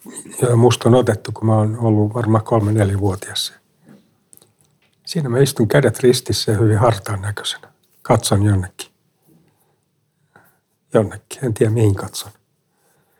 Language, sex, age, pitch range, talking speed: Finnish, male, 60-79, 110-145 Hz, 125 wpm